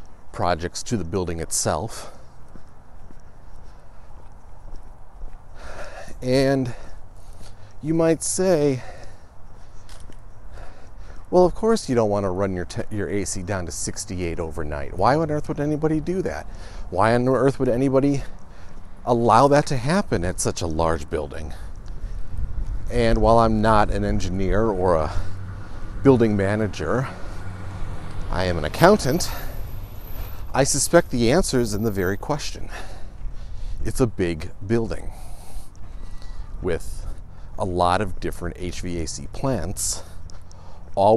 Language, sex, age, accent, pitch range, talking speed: English, male, 40-59, American, 85-110 Hz, 115 wpm